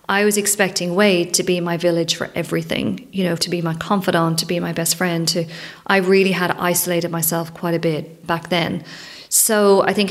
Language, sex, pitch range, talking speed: English, female, 170-200 Hz, 210 wpm